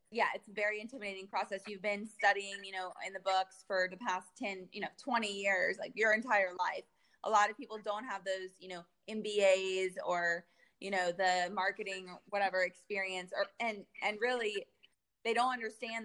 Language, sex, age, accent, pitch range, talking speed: English, female, 20-39, American, 190-220 Hz, 185 wpm